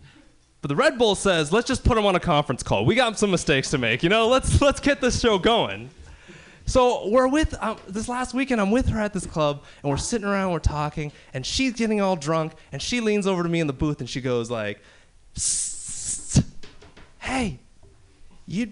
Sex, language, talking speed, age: male, English, 210 wpm, 20-39